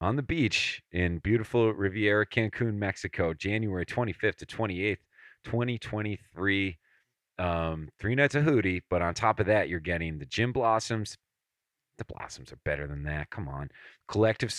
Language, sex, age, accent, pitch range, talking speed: English, male, 40-59, American, 85-110 Hz, 150 wpm